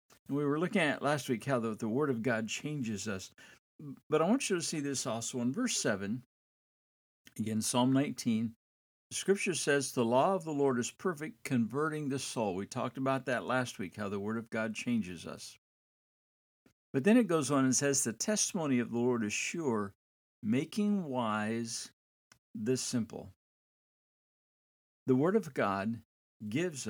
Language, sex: English, male